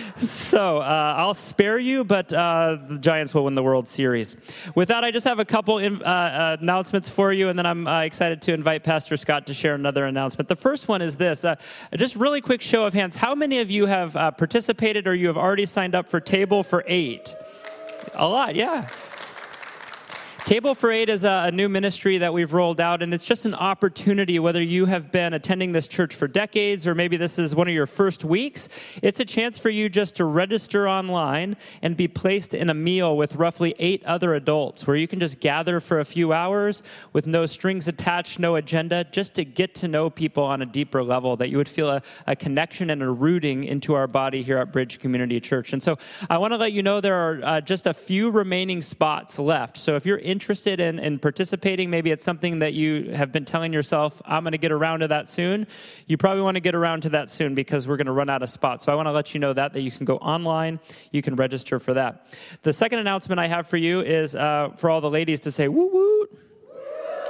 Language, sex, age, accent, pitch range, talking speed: English, male, 30-49, American, 150-195 Hz, 235 wpm